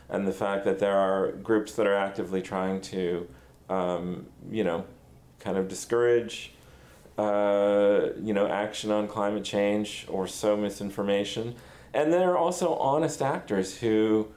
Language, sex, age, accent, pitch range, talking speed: English, male, 40-59, American, 95-110 Hz, 145 wpm